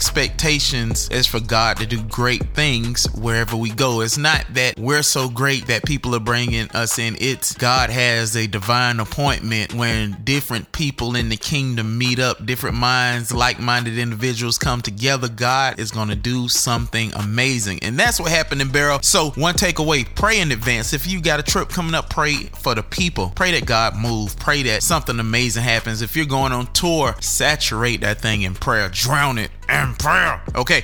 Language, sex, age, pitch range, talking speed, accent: English, male, 30-49, 115-140 Hz, 190 wpm, American